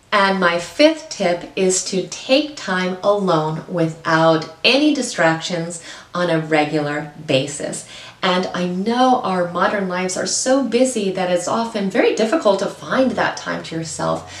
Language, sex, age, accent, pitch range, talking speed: English, female, 30-49, American, 165-225 Hz, 150 wpm